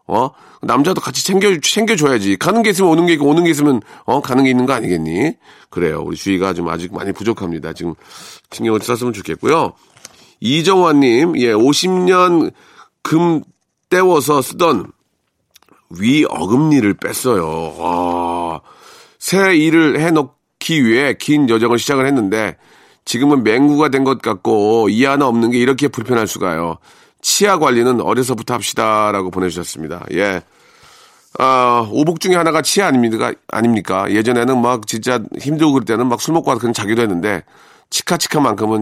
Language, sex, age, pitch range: Korean, male, 40-59, 100-150 Hz